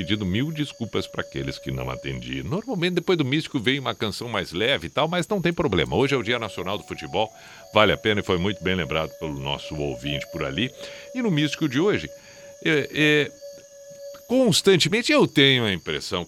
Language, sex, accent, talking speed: Portuguese, male, Brazilian, 195 wpm